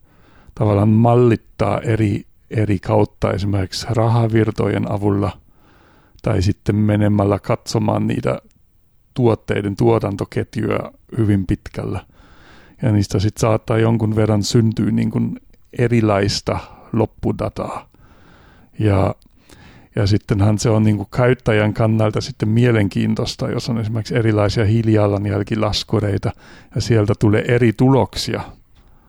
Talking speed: 90 wpm